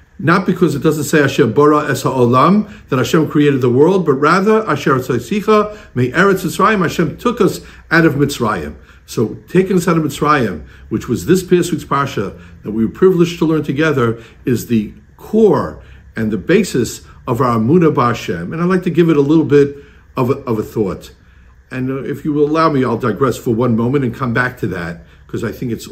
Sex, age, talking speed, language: male, 60-79, 190 wpm, English